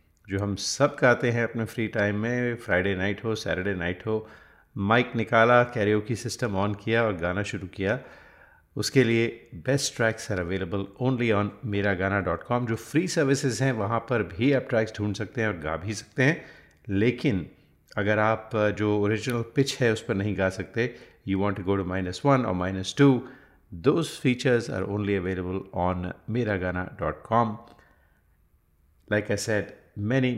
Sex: male